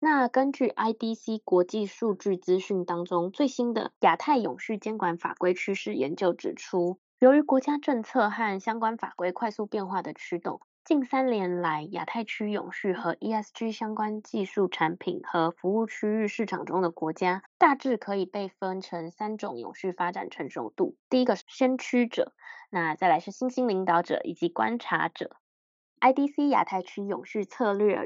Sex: female